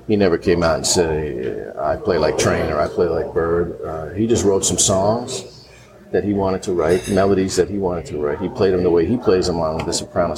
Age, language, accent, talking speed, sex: 50-69, English, American, 250 wpm, male